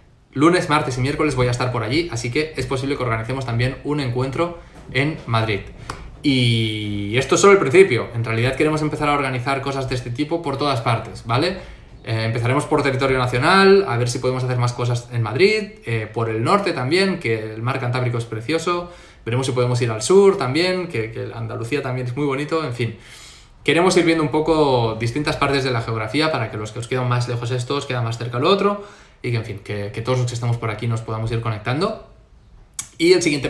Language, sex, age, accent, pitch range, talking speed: Spanish, male, 20-39, Spanish, 115-135 Hz, 220 wpm